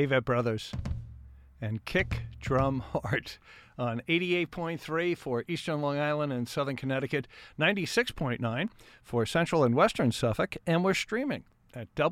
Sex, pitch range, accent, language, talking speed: male, 120-160 Hz, American, English, 125 wpm